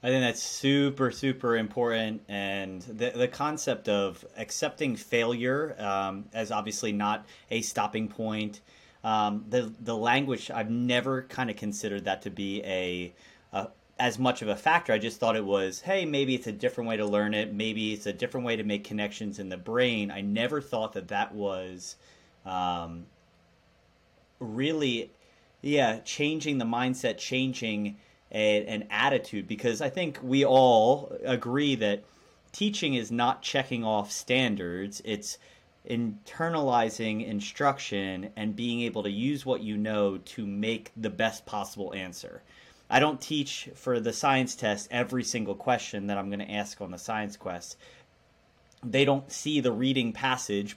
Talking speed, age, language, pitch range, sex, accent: 160 wpm, 30-49, English, 105-130 Hz, male, American